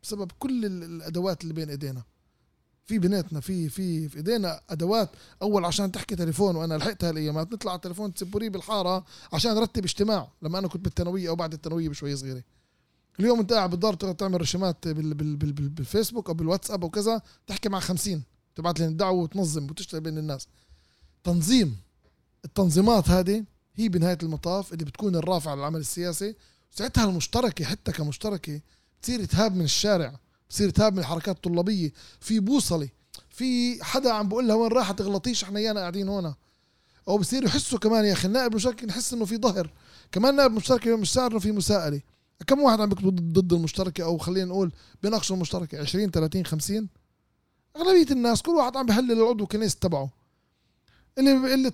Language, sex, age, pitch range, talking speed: Arabic, male, 20-39, 165-215 Hz, 165 wpm